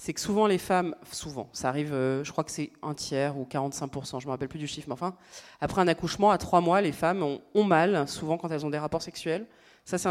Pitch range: 155-205 Hz